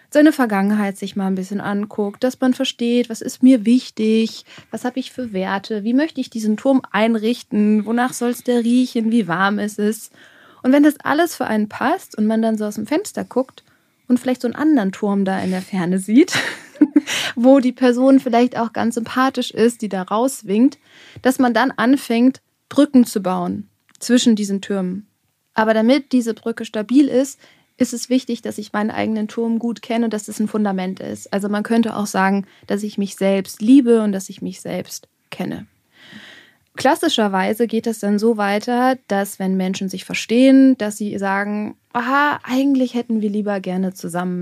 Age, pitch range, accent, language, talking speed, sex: 20-39, 205-255 Hz, German, German, 190 wpm, female